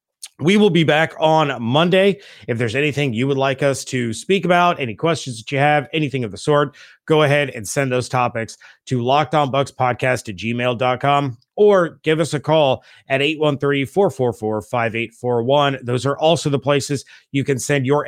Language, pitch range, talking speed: English, 120-145 Hz, 170 wpm